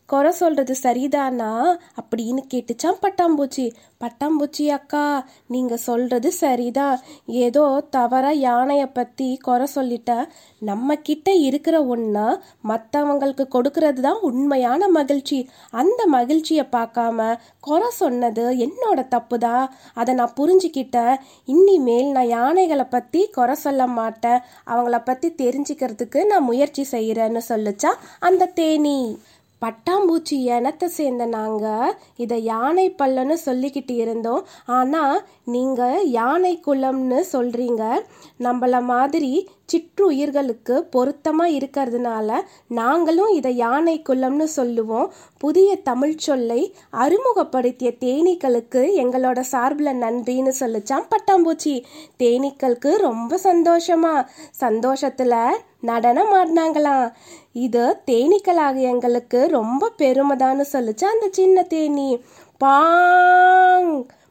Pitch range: 245-325 Hz